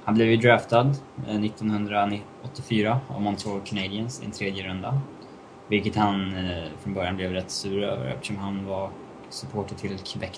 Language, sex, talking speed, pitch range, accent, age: Swedish, male, 140 wpm, 95-105 Hz, Norwegian, 20-39